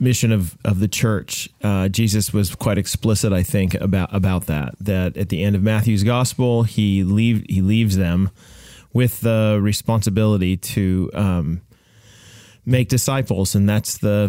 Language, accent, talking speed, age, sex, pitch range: English, American, 155 wpm, 30-49, male, 100-115 Hz